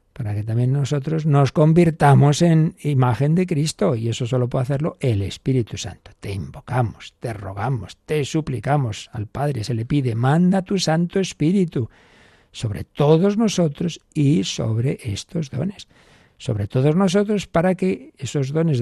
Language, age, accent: Spanish, 60-79, Spanish